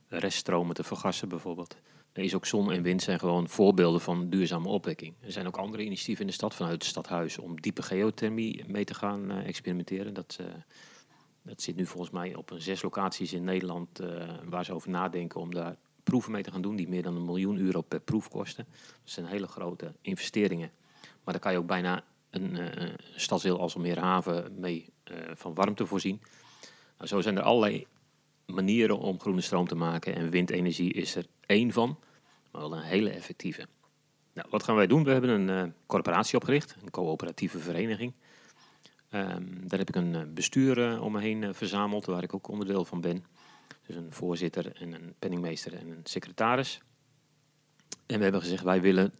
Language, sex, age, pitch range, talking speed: Dutch, male, 40-59, 85-100 Hz, 195 wpm